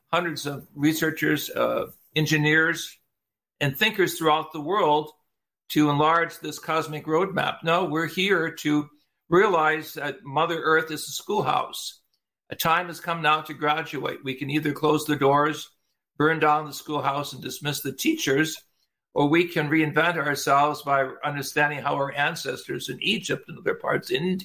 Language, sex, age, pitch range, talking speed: English, male, 60-79, 145-160 Hz, 155 wpm